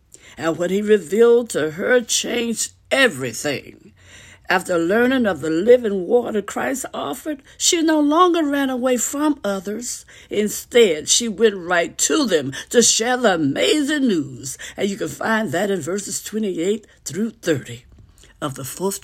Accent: American